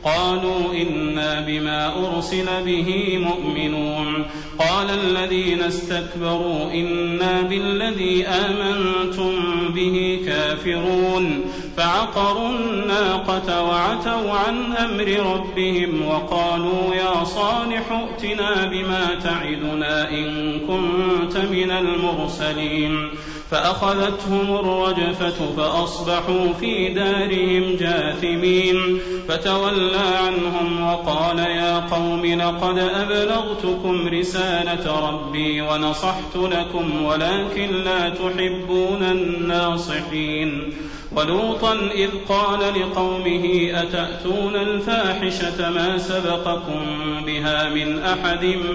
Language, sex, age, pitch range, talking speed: Arabic, male, 40-59, 170-185 Hz, 75 wpm